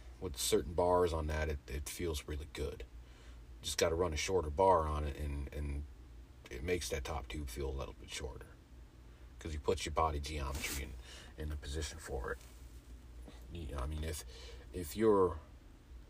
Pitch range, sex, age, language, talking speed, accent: 65-85 Hz, male, 40-59, English, 180 wpm, American